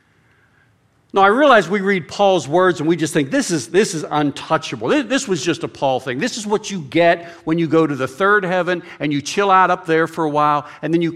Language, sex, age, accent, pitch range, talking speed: English, male, 50-69, American, 125-170 Hz, 255 wpm